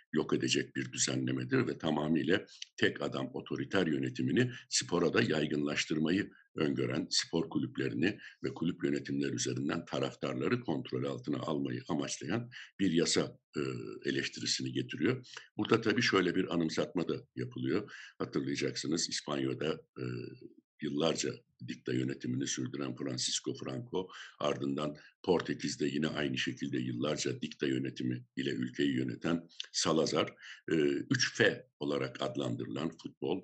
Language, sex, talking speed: Turkish, male, 110 wpm